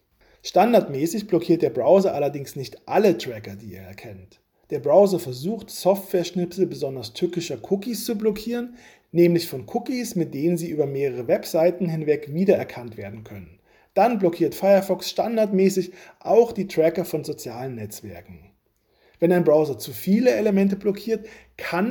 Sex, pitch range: male, 145-195 Hz